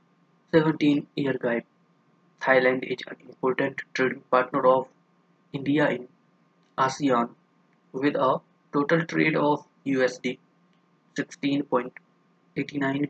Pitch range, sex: 130-170 Hz, male